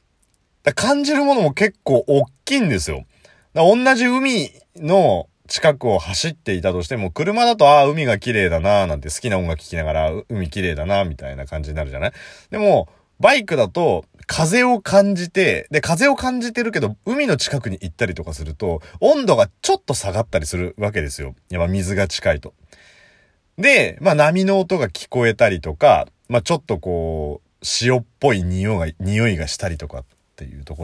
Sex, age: male, 30-49